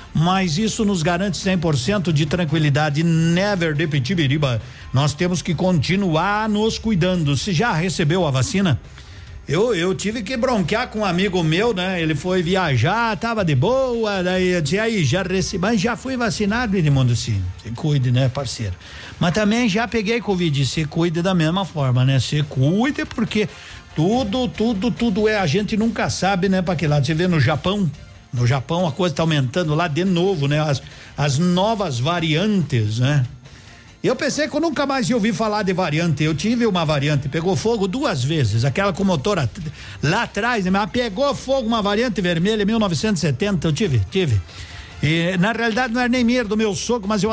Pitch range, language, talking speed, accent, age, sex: 150-215 Hz, Portuguese, 185 wpm, Brazilian, 60-79, male